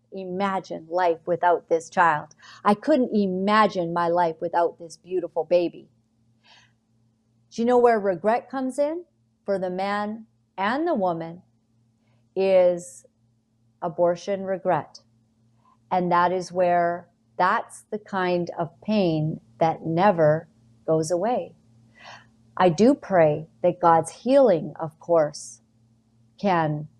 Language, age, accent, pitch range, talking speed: English, 40-59, American, 155-235 Hz, 115 wpm